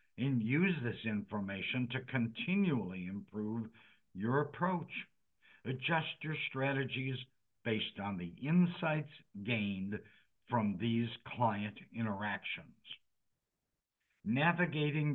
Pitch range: 110-140 Hz